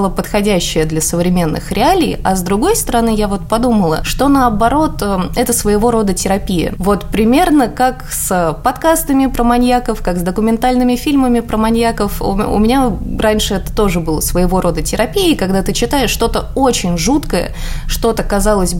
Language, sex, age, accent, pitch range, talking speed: Russian, female, 20-39, native, 190-250 Hz, 150 wpm